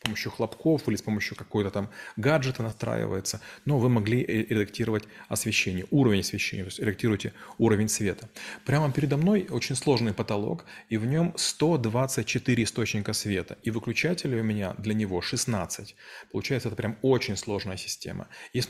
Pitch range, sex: 110-135 Hz, male